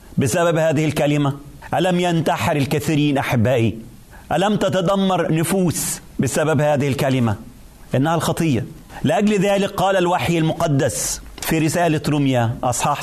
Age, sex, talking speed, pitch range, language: 40-59, male, 110 wpm, 140-195 Hz, Arabic